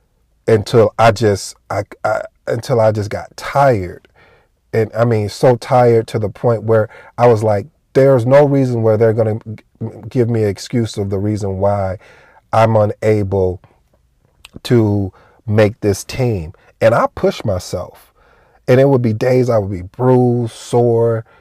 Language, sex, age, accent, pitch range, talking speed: English, male, 40-59, American, 105-125 Hz, 160 wpm